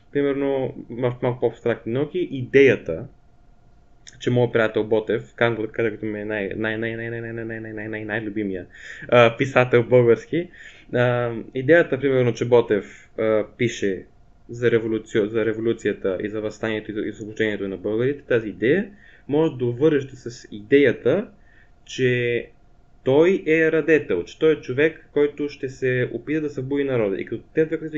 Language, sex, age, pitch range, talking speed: Bulgarian, male, 20-39, 110-135 Hz, 145 wpm